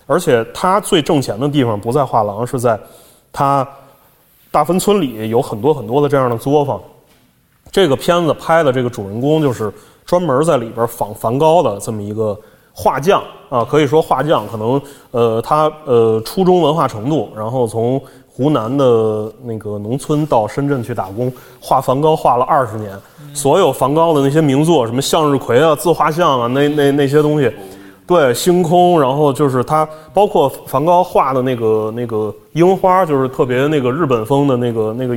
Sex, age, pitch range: male, 20-39, 115-150 Hz